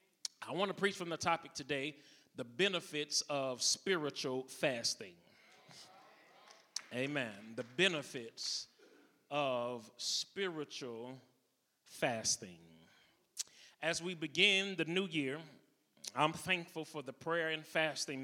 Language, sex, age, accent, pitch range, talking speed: English, male, 30-49, American, 140-175 Hz, 105 wpm